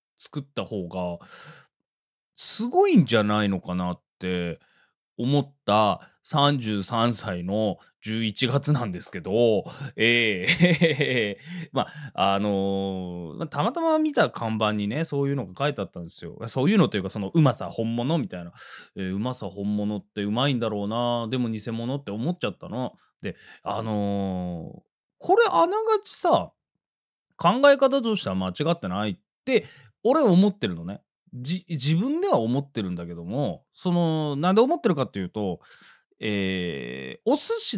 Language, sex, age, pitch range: Japanese, male, 20-39, 100-170 Hz